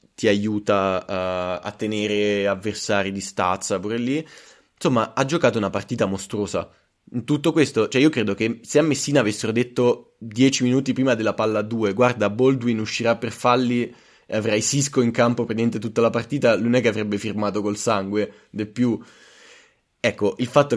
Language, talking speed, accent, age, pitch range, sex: Italian, 175 wpm, native, 20-39, 105-120 Hz, male